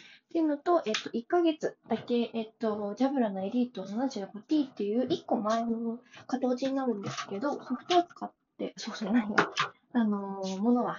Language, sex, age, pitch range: Japanese, female, 20-39, 220-310 Hz